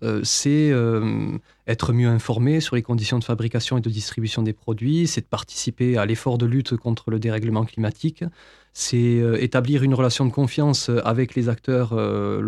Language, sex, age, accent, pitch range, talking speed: French, male, 20-39, French, 115-135 Hz, 165 wpm